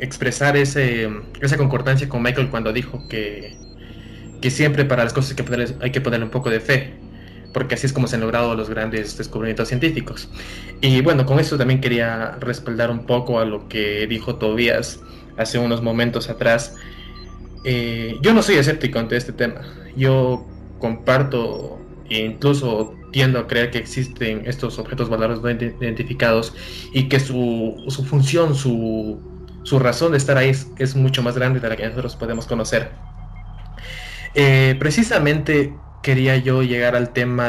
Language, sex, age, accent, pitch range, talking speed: Spanish, male, 20-39, Mexican, 110-135 Hz, 165 wpm